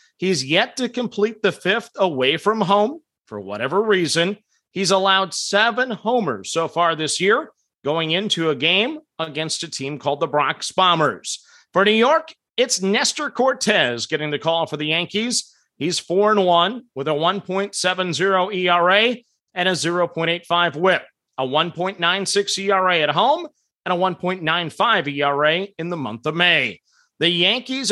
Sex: male